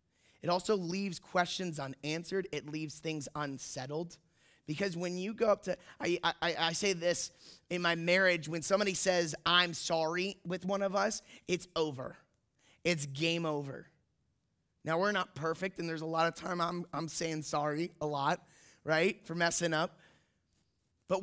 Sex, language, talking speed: male, English, 165 wpm